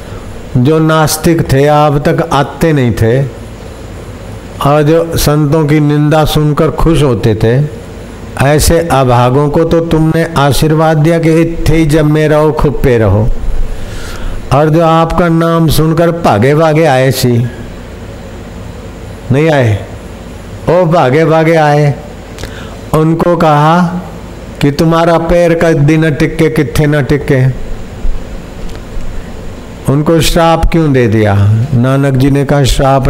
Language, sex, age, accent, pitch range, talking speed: Hindi, male, 50-69, native, 110-155 Hz, 120 wpm